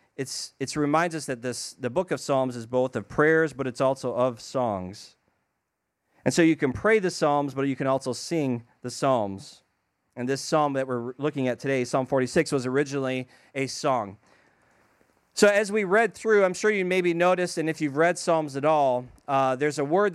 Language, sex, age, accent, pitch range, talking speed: English, male, 30-49, American, 135-175 Hz, 205 wpm